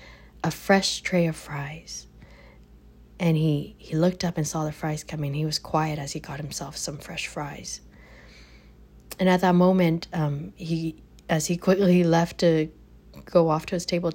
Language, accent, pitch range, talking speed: English, American, 150-180 Hz, 175 wpm